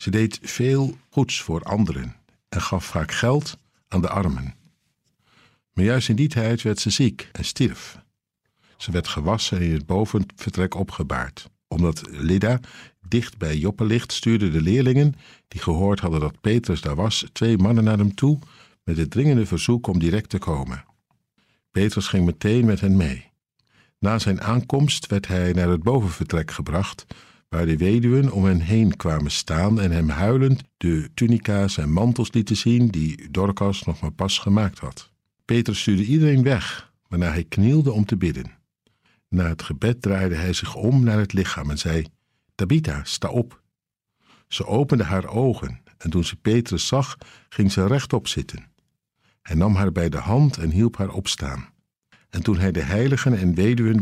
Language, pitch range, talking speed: Dutch, 90-120 Hz, 170 wpm